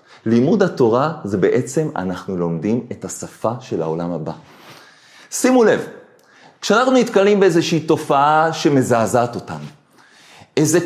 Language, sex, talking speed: Hebrew, male, 110 wpm